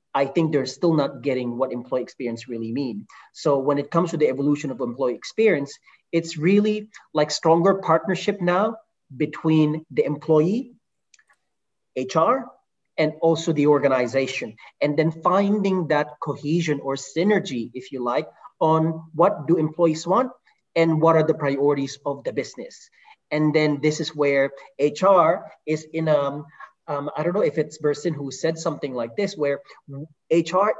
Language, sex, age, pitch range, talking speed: English, male, 30-49, 140-170 Hz, 160 wpm